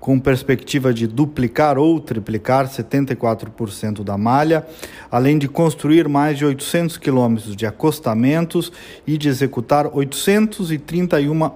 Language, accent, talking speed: Portuguese, Brazilian, 115 wpm